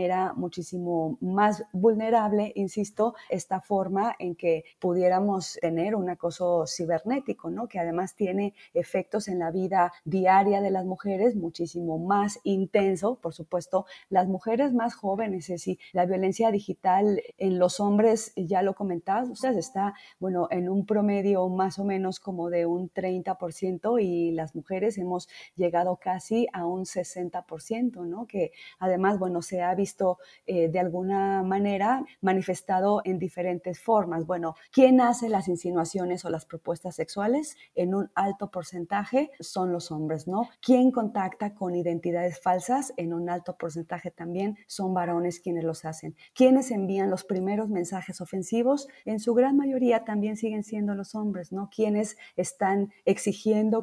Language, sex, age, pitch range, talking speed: Spanish, female, 30-49, 180-210 Hz, 145 wpm